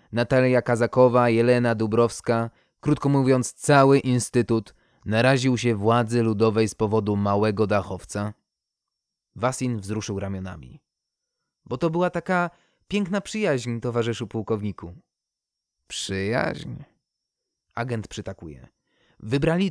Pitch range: 105-135 Hz